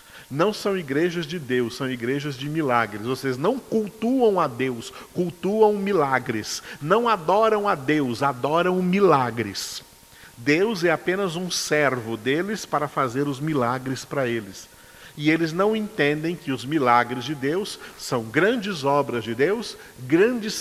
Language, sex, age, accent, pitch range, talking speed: Portuguese, male, 50-69, Brazilian, 135-190 Hz, 145 wpm